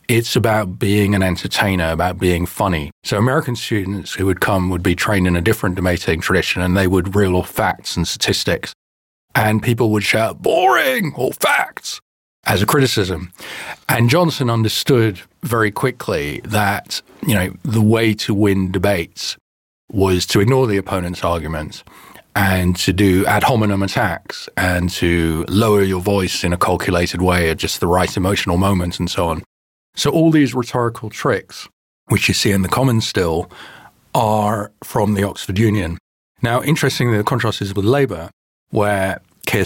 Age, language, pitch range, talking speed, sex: 40-59, English, 90-110 Hz, 165 wpm, male